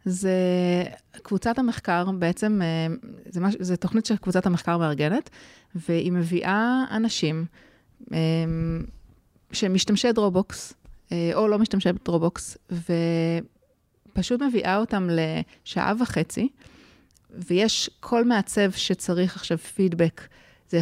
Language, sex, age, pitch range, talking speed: Hebrew, female, 30-49, 170-220 Hz, 95 wpm